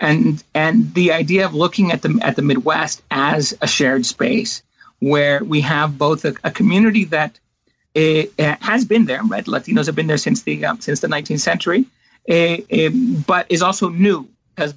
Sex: male